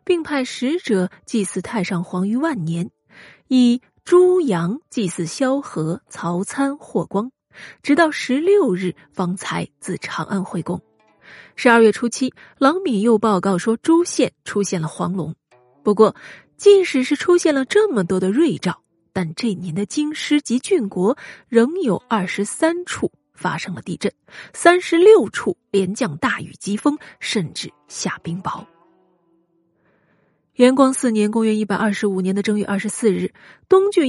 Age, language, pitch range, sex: 30-49, Chinese, 190-275 Hz, female